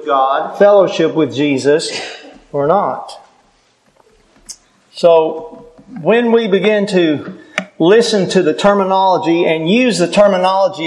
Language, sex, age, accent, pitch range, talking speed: English, male, 50-69, American, 165-230 Hz, 105 wpm